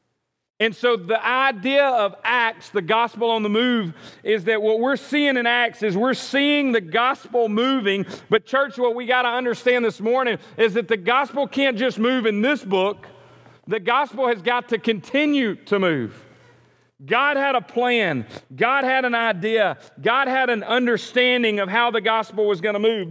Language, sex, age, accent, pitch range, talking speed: English, male, 40-59, American, 210-255 Hz, 185 wpm